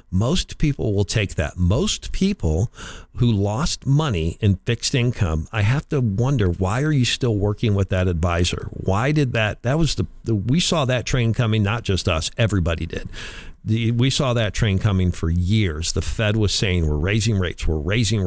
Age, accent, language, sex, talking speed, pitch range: 50-69, American, English, male, 195 wpm, 90-120 Hz